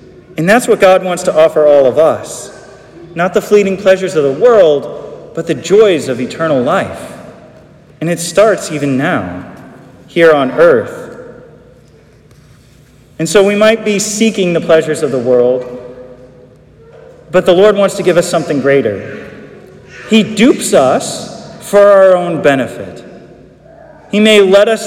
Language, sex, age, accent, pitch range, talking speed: English, male, 40-59, American, 155-210 Hz, 150 wpm